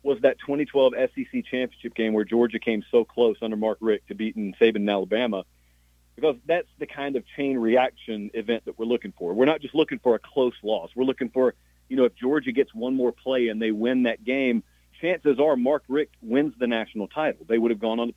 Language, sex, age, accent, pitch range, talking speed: English, male, 40-59, American, 105-145 Hz, 230 wpm